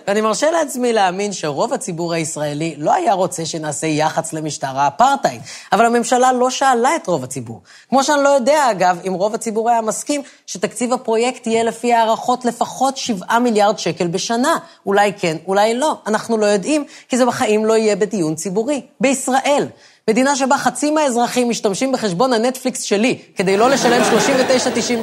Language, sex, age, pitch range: Hebrew, female, 20-39, 185-260 Hz